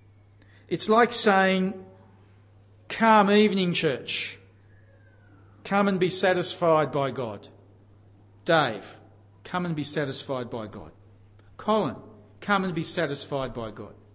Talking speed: 110 wpm